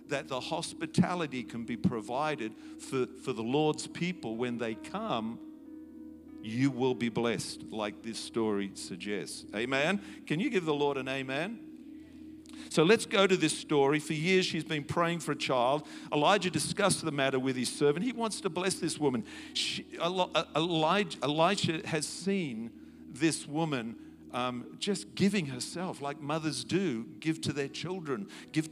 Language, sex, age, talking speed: English, male, 50-69, 155 wpm